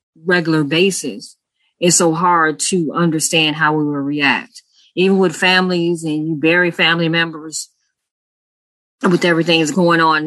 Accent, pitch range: American, 155-180 Hz